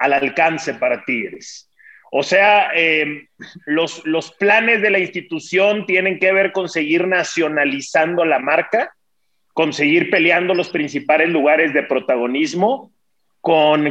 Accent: Mexican